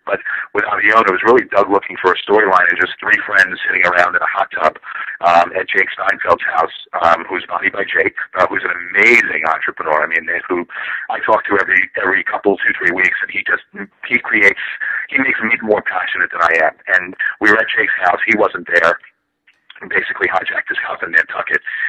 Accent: American